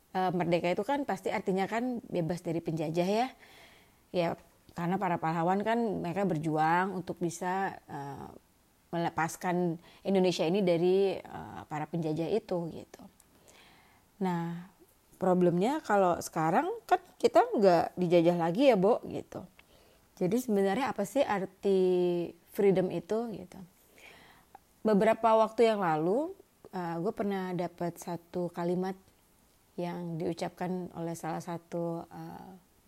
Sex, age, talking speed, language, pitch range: female, 30-49, 120 wpm, Indonesian, 170-205 Hz